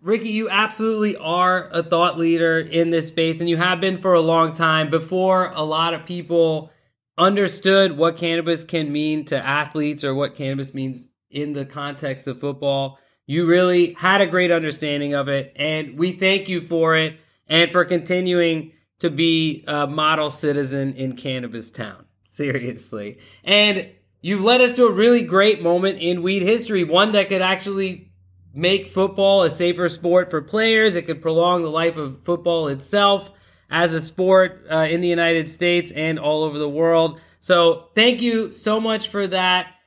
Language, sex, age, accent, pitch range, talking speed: English, male, 20-39, American, 150-185 Hz, 175 wpm